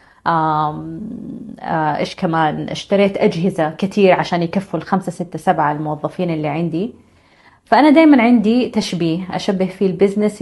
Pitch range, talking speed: 160-215 Hz, 120 wpm